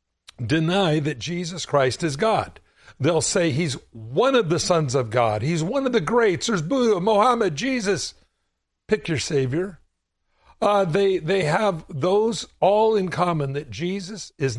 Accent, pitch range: American, 145-210 Hz